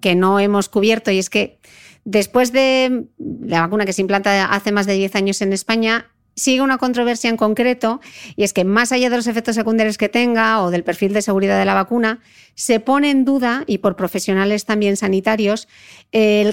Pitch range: 195-240 Hz